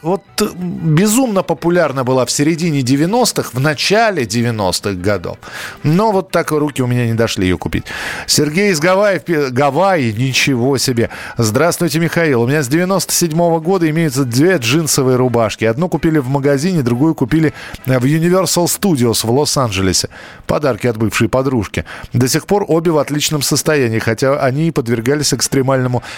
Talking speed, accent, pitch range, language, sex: 150 wpm, native, 125-165 Hz, Russian, male